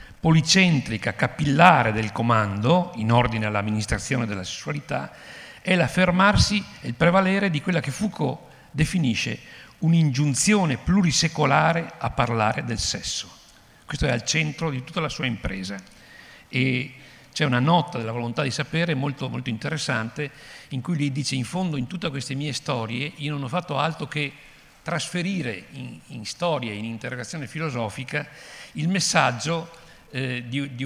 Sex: male